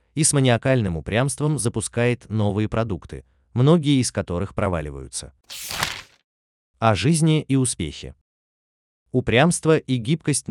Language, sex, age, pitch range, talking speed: Russian, male, 30-49, 85-130 Hz, 105 wpm